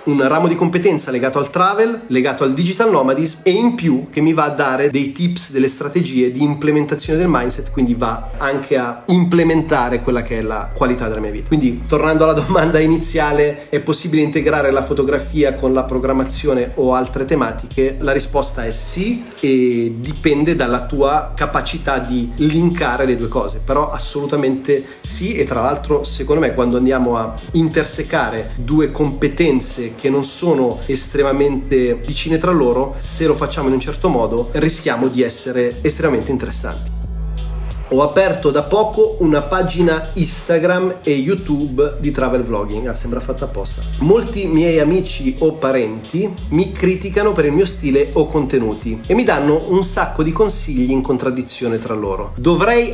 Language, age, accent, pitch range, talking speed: Italian, 30-49, native, 125-165 Hz, 160 wpm